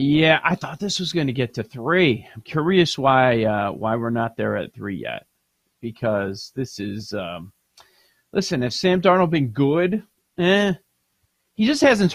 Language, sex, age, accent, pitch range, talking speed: English, male, 30-49, American, 120-160 Hz, 175 wpm